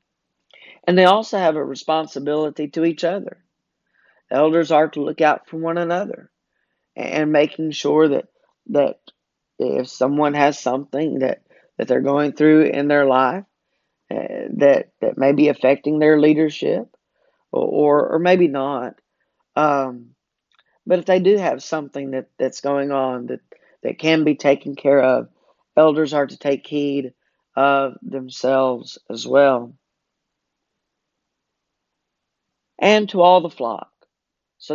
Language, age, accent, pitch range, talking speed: English, 40-59, American, 130-155 Hz, 140 wpm